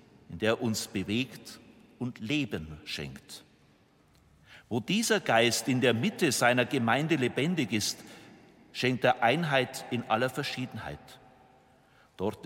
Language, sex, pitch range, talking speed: German, male, 115-140 Hz, 115 wpm